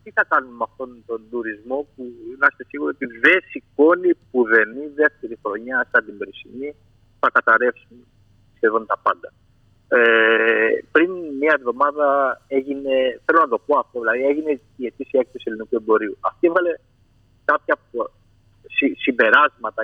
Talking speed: 150 wpm